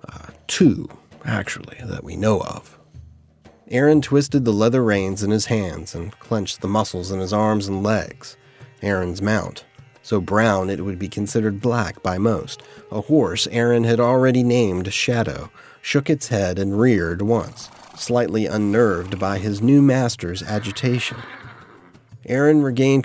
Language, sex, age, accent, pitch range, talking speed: English, male, 30-49, American, 105-135 Hz, 150 wpm